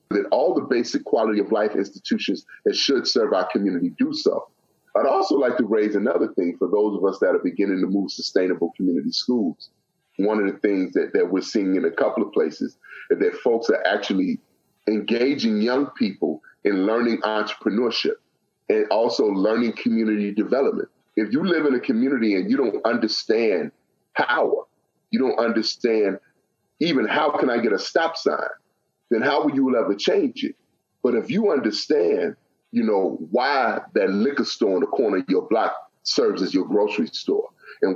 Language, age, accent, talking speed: English, 30-49, American, 180 wpm